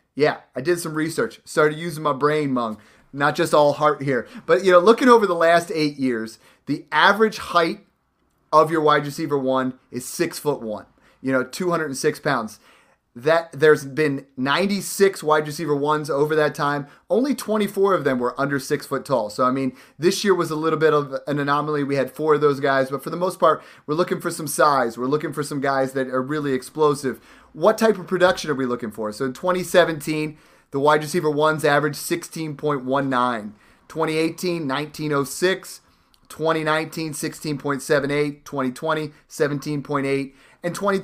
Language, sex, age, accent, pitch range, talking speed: English, male, 30-49, American, 140-170 Hz, 165 wpm